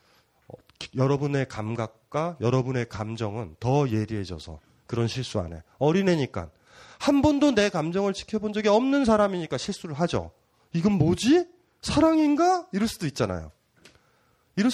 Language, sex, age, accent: Korean, male, 30-49, native